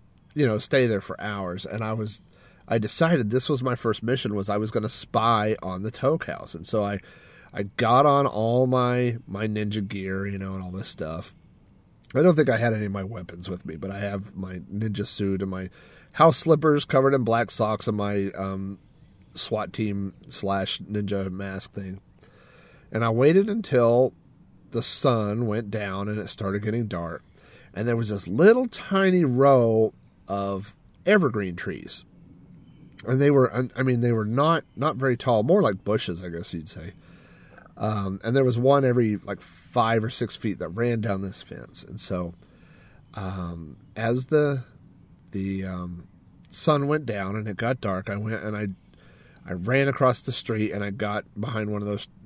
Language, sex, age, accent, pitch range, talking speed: English, male, 40-59, American, 100-125 Hz, 190 wpm